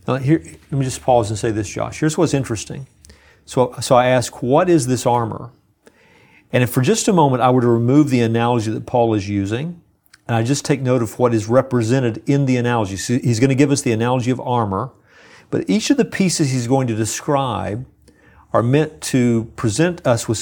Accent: American